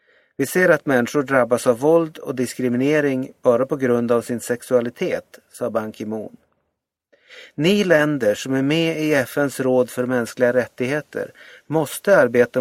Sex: male